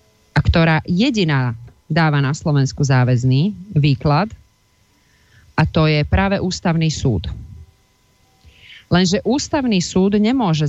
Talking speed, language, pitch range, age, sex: 100 wpm, Slovak, 130-175 Hz, 40-59, female